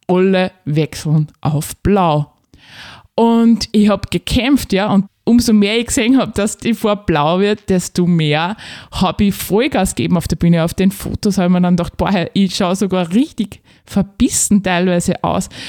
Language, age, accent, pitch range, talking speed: German, 20-39, Austrian, 175-235 Hz, 170 wpm